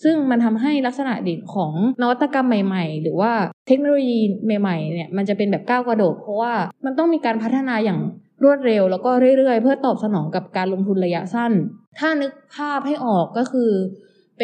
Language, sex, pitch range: Thai, female, 190-245 Hz